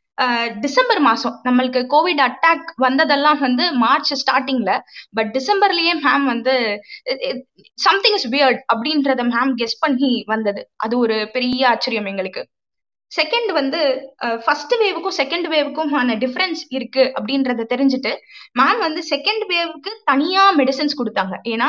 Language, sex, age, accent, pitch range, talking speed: Tamil, female, 20-39, native, 245-310 Hz, 130 wpm